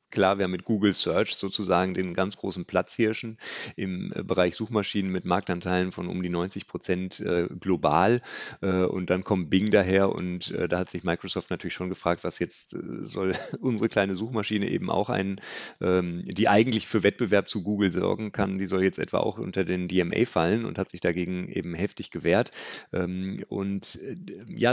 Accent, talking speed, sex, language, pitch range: German, 185 wpm, male, German, 90-105 Hz